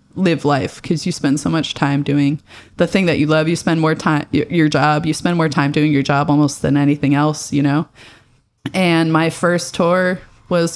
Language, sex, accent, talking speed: English, female, American, 210 wpm